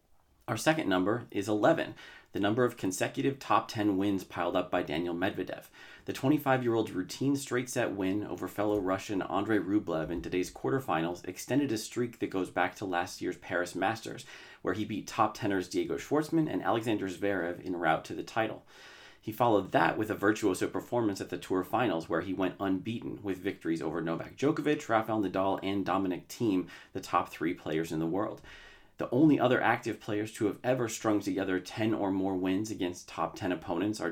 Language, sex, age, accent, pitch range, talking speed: English, male, 30-49, American, 90-115 Hz, 190 wpm